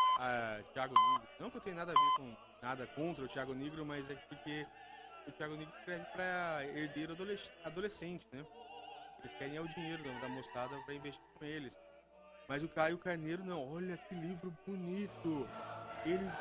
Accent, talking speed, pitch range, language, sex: Brazilian, 180 wpm, 130-185 Hz, Portuguese, male